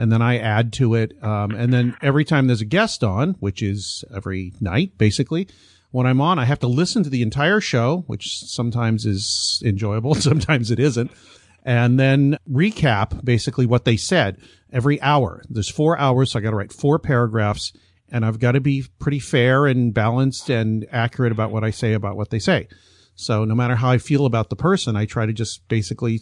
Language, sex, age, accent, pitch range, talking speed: English, male, 40-59, American, 110-135 Hz, 205 wpm